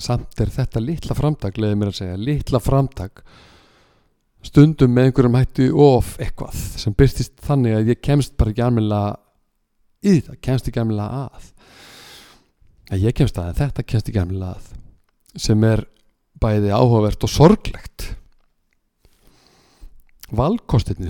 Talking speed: 125 wpm